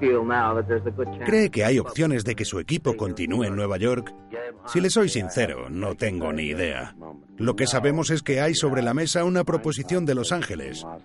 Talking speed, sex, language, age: 185 wpm, male, Spanish, 40-59